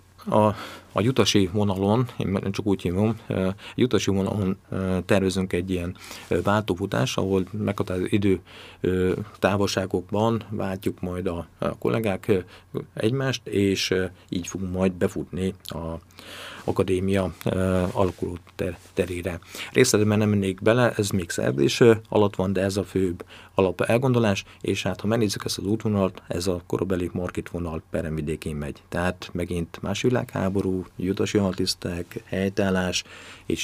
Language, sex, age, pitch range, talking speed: Hungarian, male, 50-69, 90-105 Hz, 120 wpm